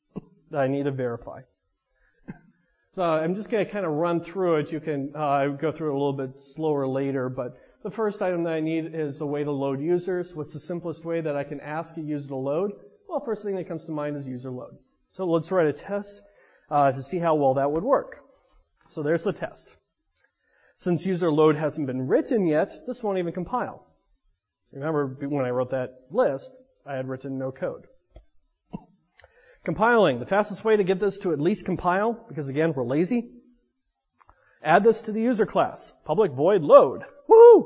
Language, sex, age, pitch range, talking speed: English, male, 30-49, 145-195 Hz, 200 wpm